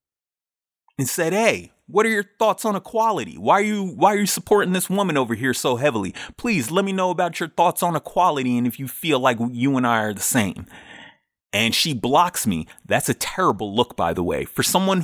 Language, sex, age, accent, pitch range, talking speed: English, male, 30-49, American, 115-180 Hz, 220 wpm